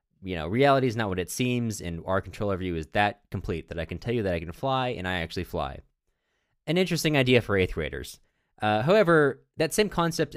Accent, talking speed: American, 230 wpm